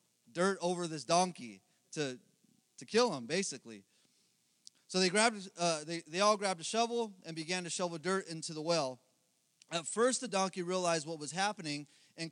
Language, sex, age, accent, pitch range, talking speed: English, male, 30-49, American, 160-205 Hz, 175 wpm